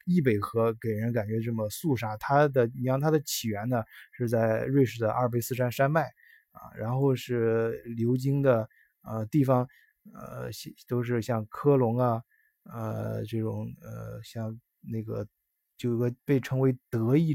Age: 20-39